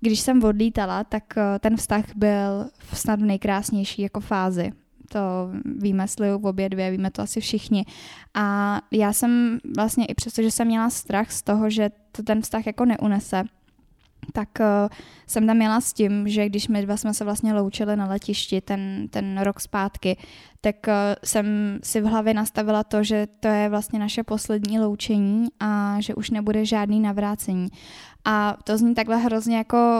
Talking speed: 170 wpm